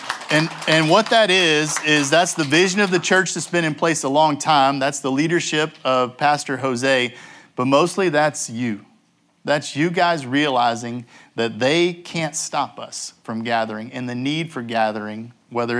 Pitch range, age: 125-165 Hz, 50-69